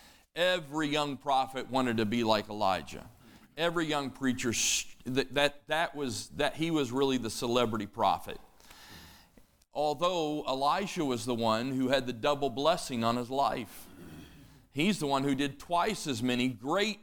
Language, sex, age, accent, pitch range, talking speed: English, male, 40-59, American, 120-150 Hz, 155 wpm